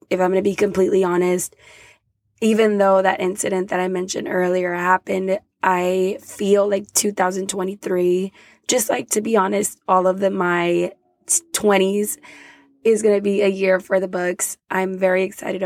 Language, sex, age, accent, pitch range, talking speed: English, female, 20-39, American, 185-205 Hz, 160 wpm